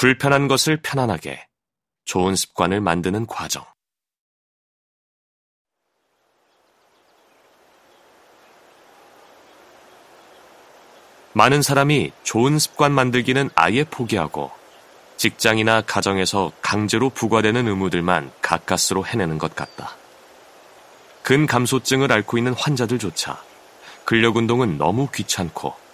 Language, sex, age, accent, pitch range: Korean, male, 30-49, native, 100-140 Hz